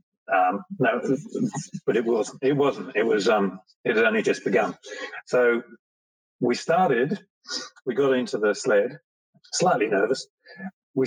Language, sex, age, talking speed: English, male, 40-59, 140 wpm